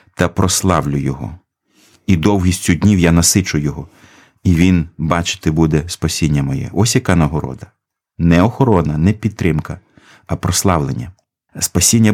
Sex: male